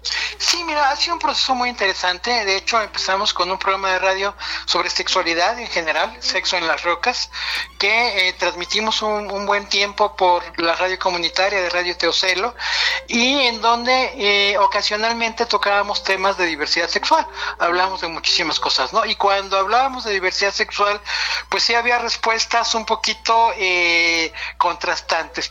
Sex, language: male, Spanish